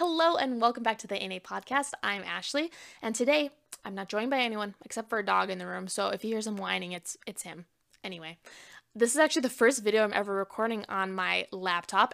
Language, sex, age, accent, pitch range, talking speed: English, female, 10-29, American, 190-235 Hz, 225 wpm